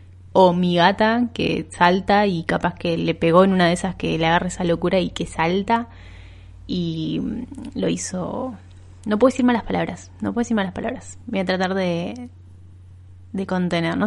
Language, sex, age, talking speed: Spanish, female, 20-39, 180 wpm